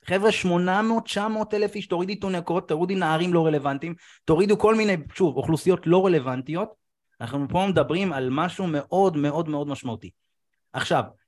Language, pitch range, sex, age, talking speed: Hebrew, 120-165 Hz, male, 30-49, 145 wpm